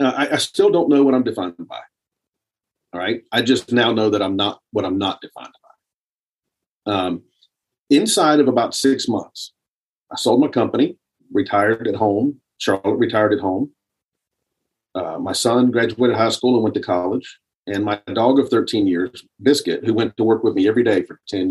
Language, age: English, 40-59